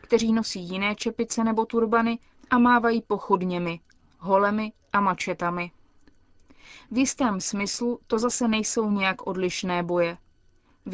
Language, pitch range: Czech, 190-230 Hz